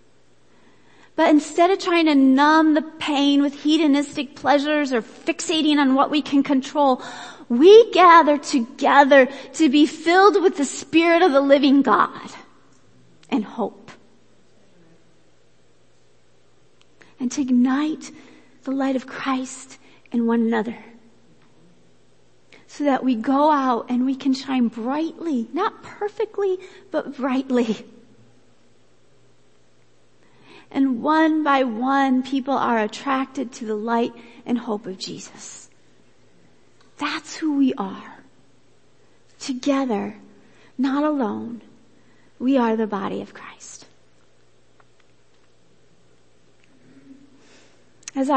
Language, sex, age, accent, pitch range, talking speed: English, female, 40-59, American, 210-285 Hz, 105 wpm